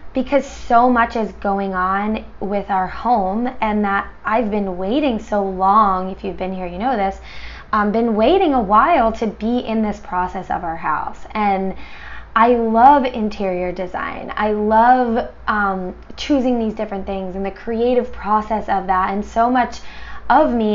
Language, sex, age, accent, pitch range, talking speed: English, female, 10-29, American, 190-235 Hz, 170 wpm